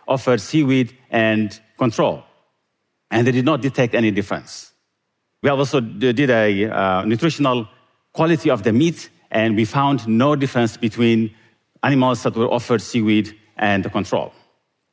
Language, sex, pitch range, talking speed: English, male, 115-145 Hz, 135 wpm